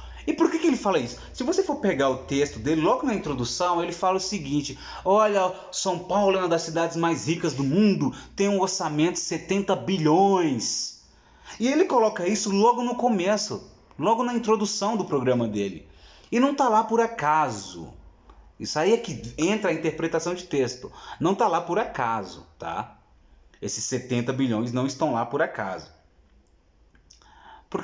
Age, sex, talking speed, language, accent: 30-49, male, 175 wpm, Portuguese, Brazilian